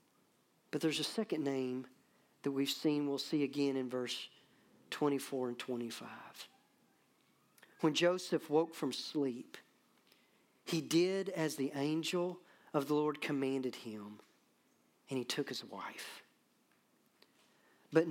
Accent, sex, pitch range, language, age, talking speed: American, male, 140-195 Hz, English, 40-59, 125 wpm